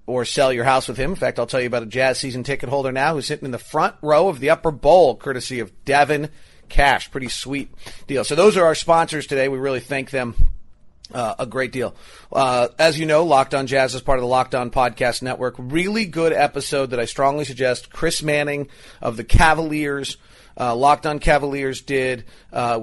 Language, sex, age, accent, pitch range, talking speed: English, male, 40-59, American, 120-145 Hz, 215 wpm